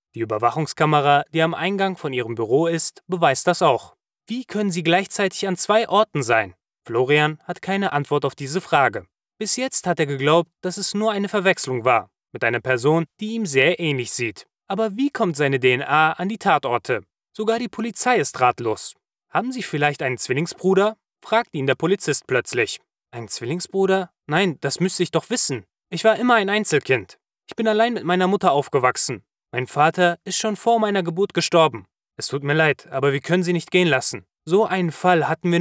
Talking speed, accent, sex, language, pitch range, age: 190 wpm, German, male, German, 145-215 Hz, 20-39